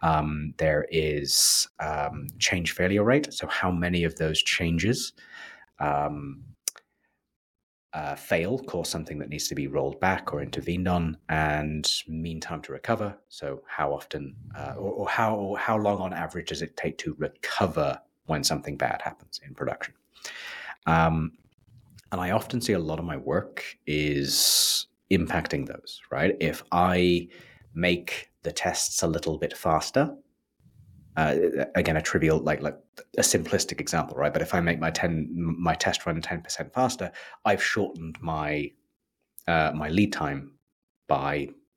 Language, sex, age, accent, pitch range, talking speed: English, male, 30-49, British, 75-90 Hz, 150 wpm